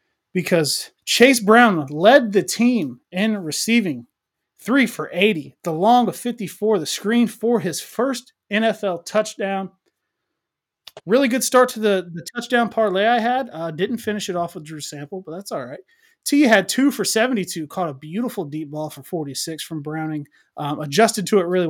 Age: 30-49